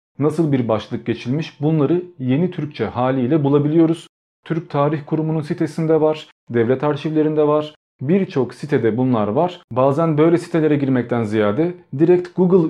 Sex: male